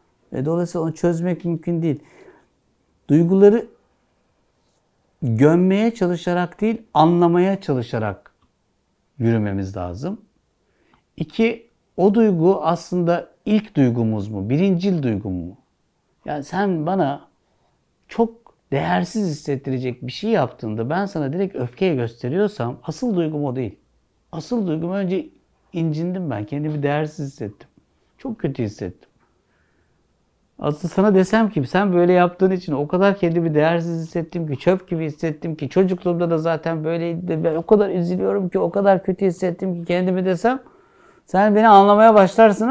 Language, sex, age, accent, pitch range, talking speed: Turkish, male, 60-79, native, 130-190 Hz, 130 wpm